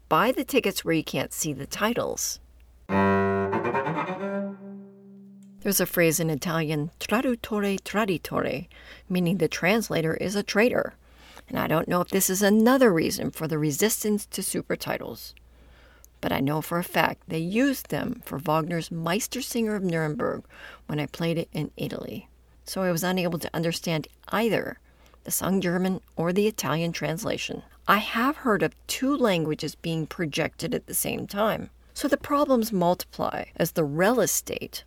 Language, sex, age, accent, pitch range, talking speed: English, female, 40-59, American, 155-210 Hz, 155 wpm